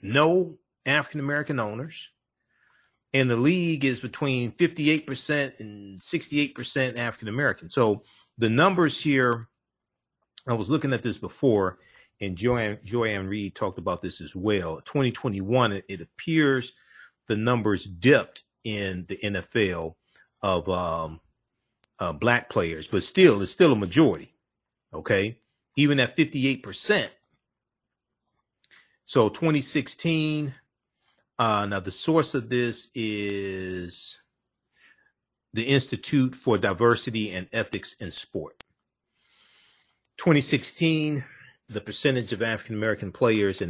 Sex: male